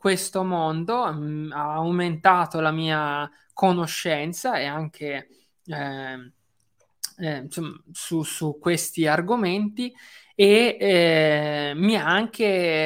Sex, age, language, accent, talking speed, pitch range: male, 20-39, Italian, native, 95 wpm, 155-185 Hz